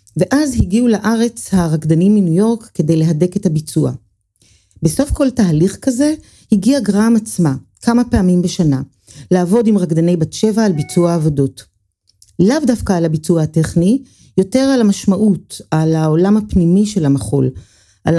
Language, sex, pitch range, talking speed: Hebrew, female, 145-195 Hz, 140 wpm